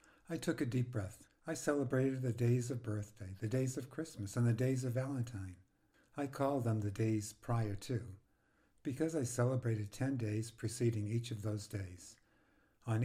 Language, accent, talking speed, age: English, American, 175 wpm, 60-79